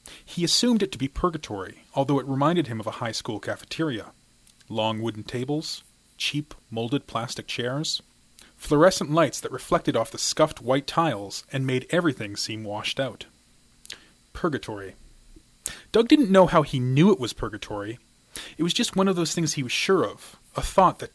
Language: English